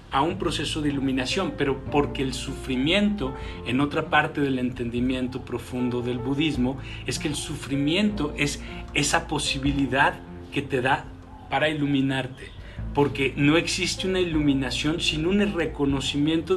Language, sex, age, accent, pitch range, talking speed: Spanish, male, 40-59, Mexican, 130-165 Hz, 135 wpm